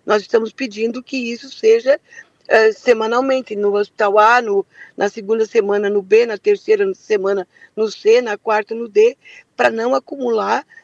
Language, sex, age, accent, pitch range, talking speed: Portuguese, female, 50-69, Brazilian, 215-270 Hz, 155 wpm